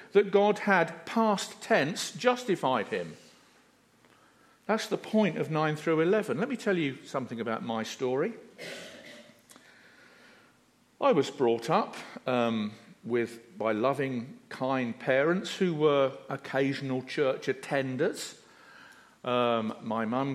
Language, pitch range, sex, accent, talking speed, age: English, 115-160 Hz, male, British, 120 wpm, 50-69